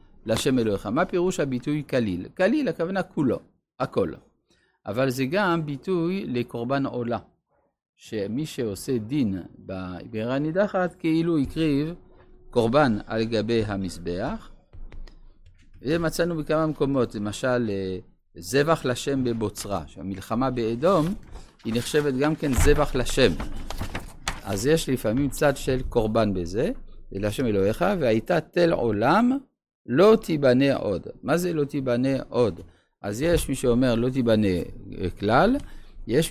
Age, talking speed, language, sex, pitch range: 50-69, 115 wpm, Hebrew, male, 110-150 Hz